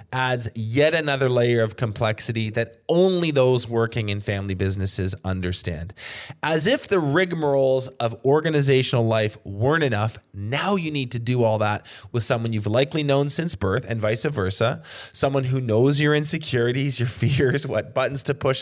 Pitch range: 115-145 Hz